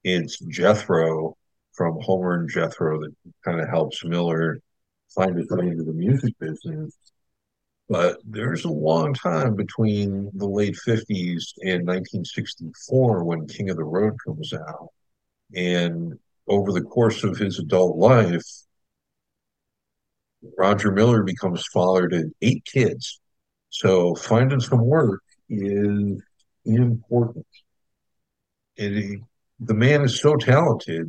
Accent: American